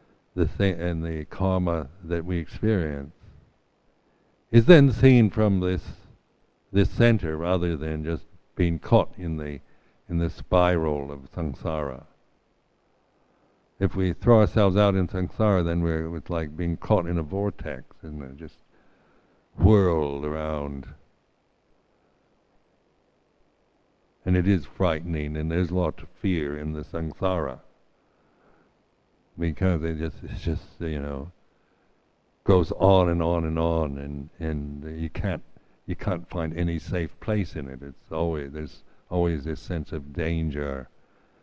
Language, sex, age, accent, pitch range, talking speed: English, male, 60-79, American, 75-95 Hz, 135 wpm